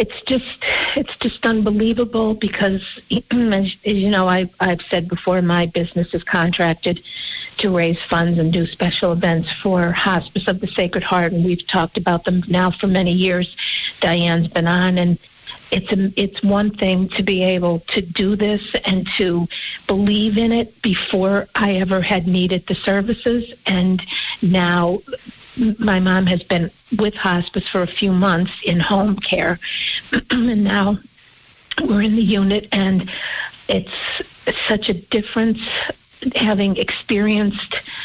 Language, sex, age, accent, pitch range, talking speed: English, female, 50-69, American, 180-210 Hz, 150 wpm